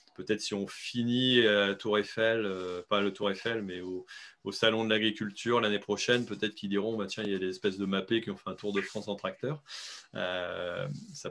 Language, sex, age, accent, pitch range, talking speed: French, male, 30-49, French, 100-125 Hz, 230 wpm